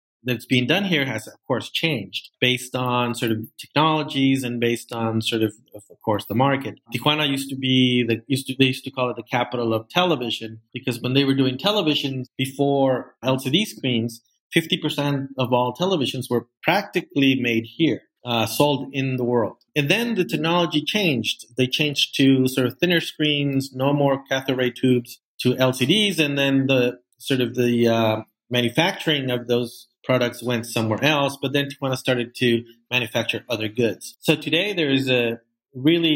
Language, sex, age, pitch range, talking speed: English, male, 30-49, 120-150 Hz, 180 wpm